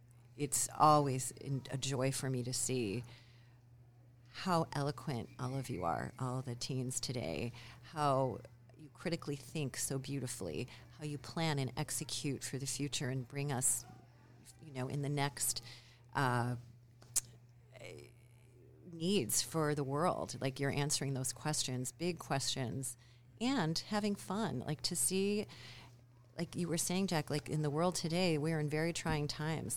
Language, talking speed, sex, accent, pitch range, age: English, 145 wpm, female, American, 120-145 Hz, 40-59